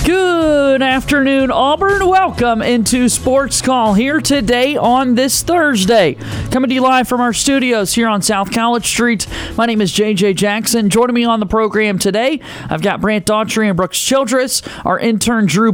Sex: male